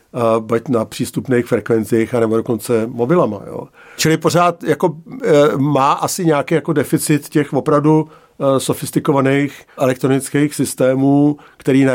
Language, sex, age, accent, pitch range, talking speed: Czech, male, 50-69, native, 125-150 Hz, 125 wpm